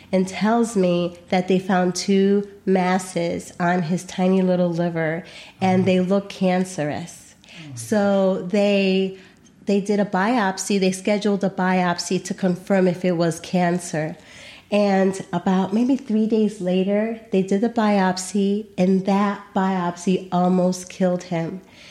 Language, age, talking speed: English, 30-49, 135 wpm